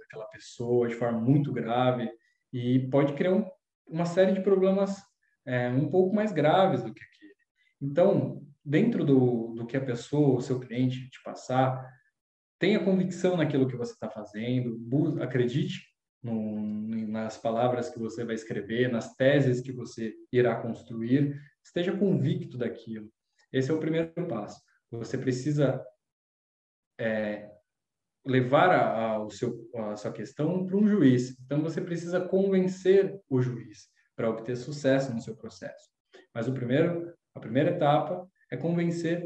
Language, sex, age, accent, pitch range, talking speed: Portuguese, male, 20-39, Brazilian, 120-160 Hz, 150 wpm